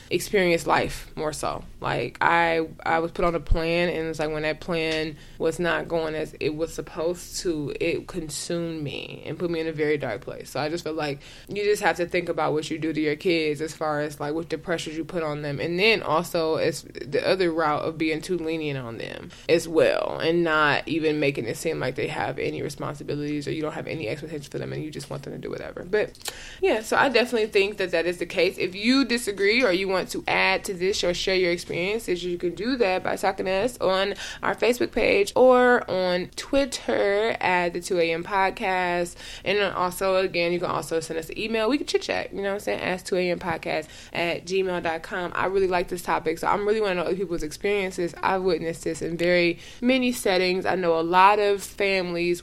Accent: American